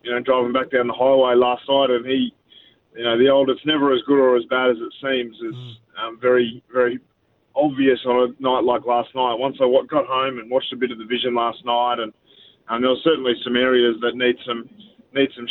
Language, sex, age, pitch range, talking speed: English, male, 20-39, 120-135 Hz, 235 wpm